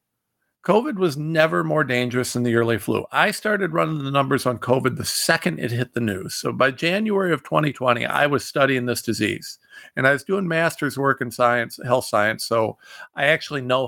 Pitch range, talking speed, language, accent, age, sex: 125-165 Hz, 200 wpm, English, American, 50-69, male